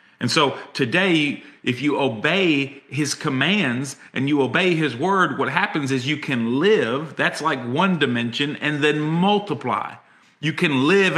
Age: 40-59